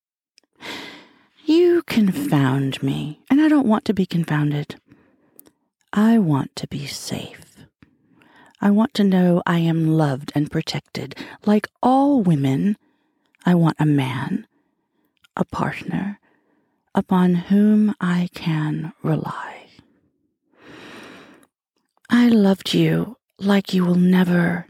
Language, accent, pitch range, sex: English, American, 155-215 Hz, female